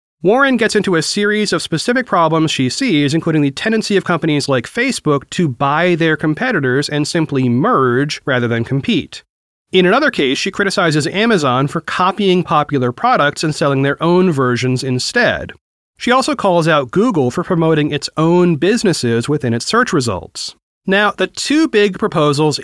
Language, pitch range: English, 135-190 Hz